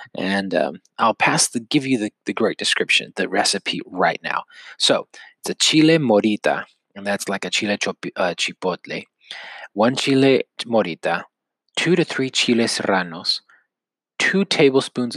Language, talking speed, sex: English, 145 wpm, male